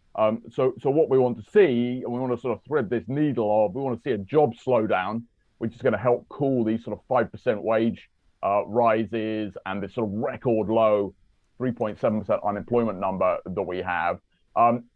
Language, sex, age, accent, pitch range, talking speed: English, male, 30-49, British, 105-125 Hz, 205 wpm